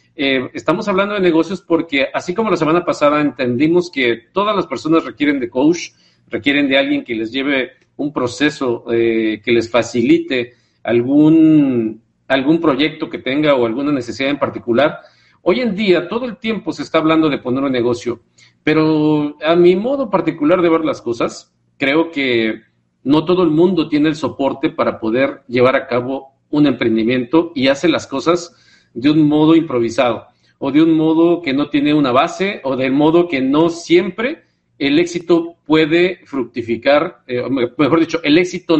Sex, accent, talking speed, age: male, Mexican, 170 wpm, 50-69